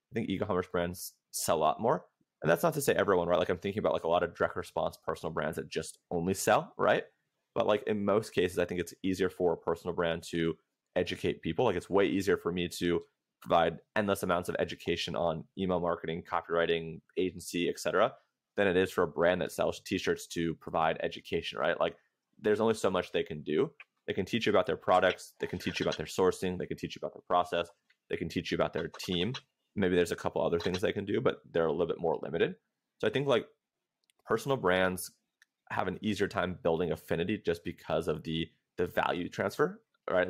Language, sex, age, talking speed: English, male, 20-39, 225 wpm